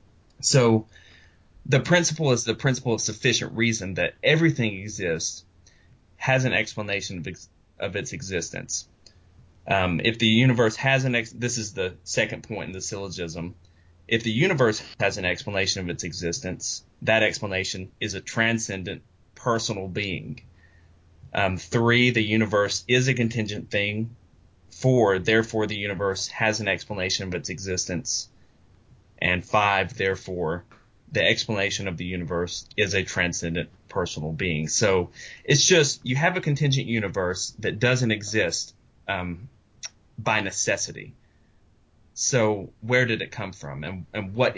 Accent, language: American, English